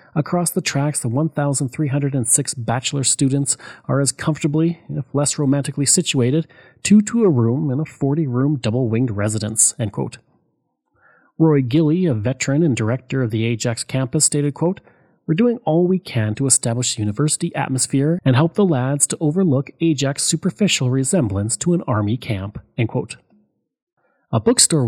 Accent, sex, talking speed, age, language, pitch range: Canadian, male, 155 wpm, 30-49, English, 125-170 Hz